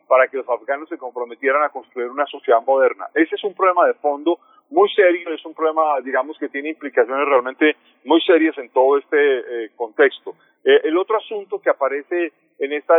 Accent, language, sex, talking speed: Colombian, Spanish, male, 195 wpm